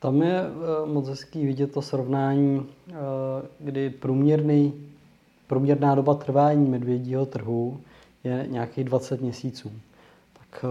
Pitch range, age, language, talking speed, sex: 125-140 Hz, 20-39, Czech, 105 wpm, male